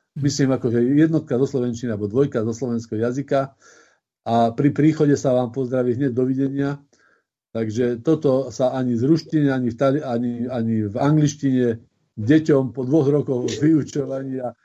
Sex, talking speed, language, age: male, 135 wpm, Slovak, 50-69